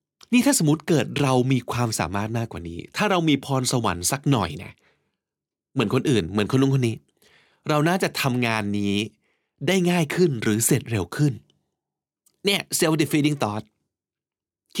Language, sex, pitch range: Thai, male, 105-145 Hz